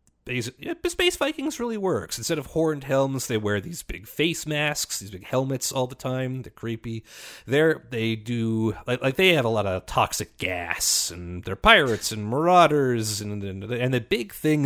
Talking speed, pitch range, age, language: 185 wpm, 110-140 Hz, 30-49, English